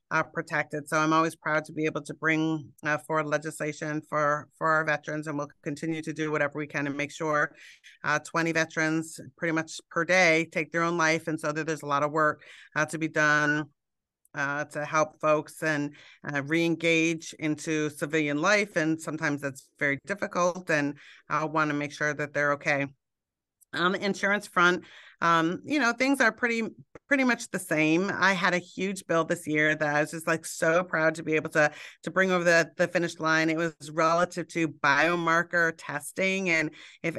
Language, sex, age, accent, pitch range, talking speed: English, female, 40-59, American, 150-170 Hz, 200 wpm